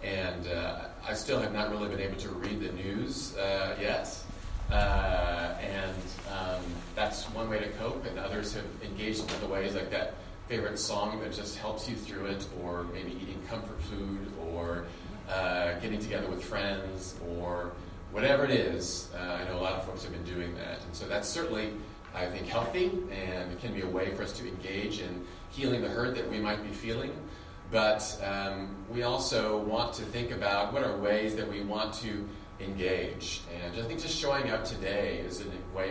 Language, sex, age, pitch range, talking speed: English, male, 30-49, 90-105 Hz, 195 wpm